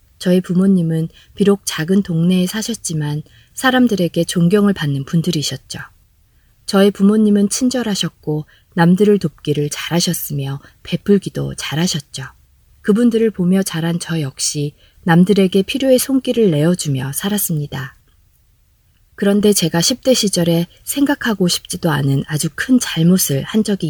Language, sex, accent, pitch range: Korean, female, native, 145-200 Hz